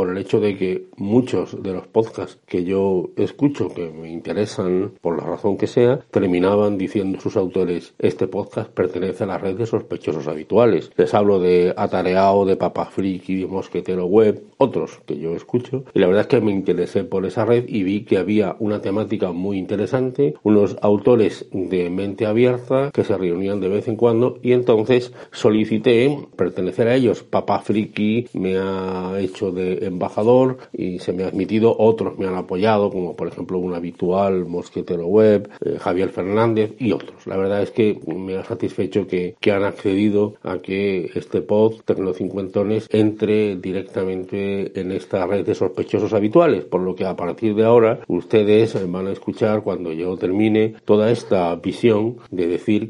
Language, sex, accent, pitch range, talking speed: Spanish, male, Spanish, 95-110 Hz, 175 wpm